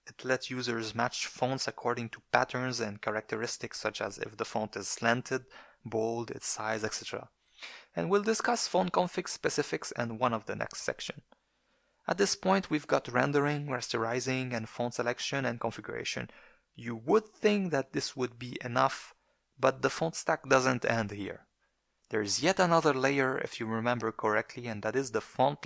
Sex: male